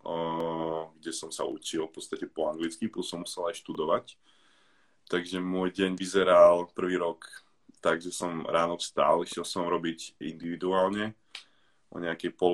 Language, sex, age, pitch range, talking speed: Slovak, male, 20-39, 85-100 Hz, 145 wpm